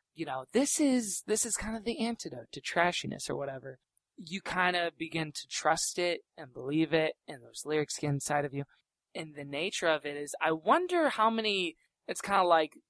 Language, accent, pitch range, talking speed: English, American, 140-180 Hz, 210 wpm